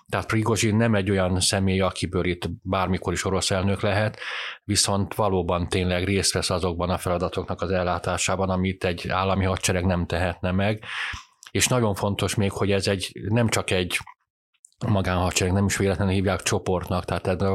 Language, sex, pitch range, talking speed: Hungarian, male, 90-100 Hz, 170 wpm